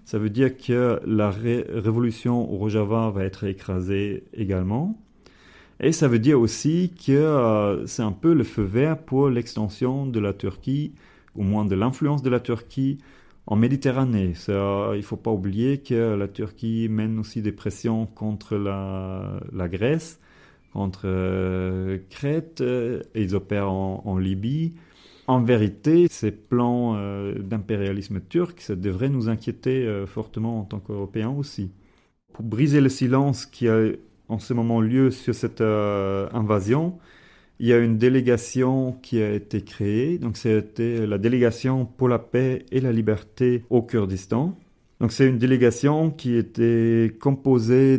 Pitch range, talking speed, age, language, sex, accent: 105-130 Hz, 155 wpm, 40-59, French, male, French